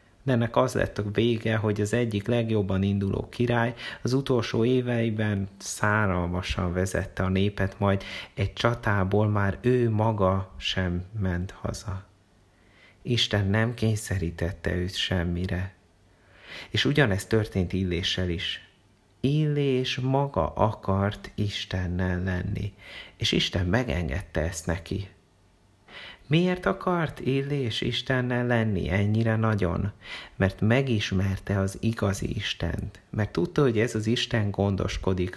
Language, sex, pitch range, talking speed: Hungarian, male, 95-115 Hz, 115 wpm